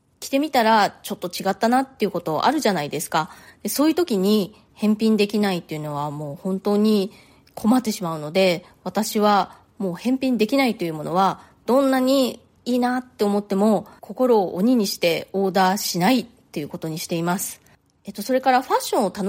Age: 20-39